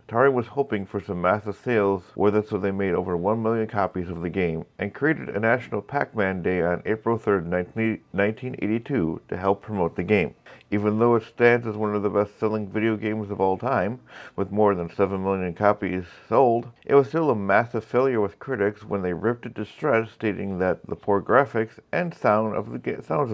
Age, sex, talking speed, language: 50-69, male, 205 wpm, English